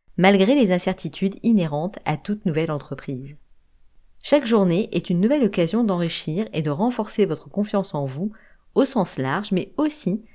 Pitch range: 155-225 Hz